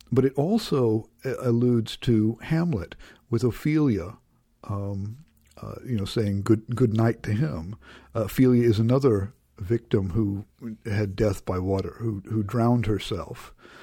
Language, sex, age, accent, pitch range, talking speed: English, male, 60-79, American, 110-130 Hz, 140 wpm